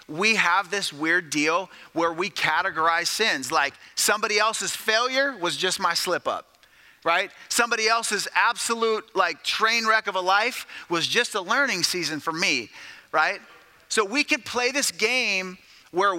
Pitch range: 175-230 Hz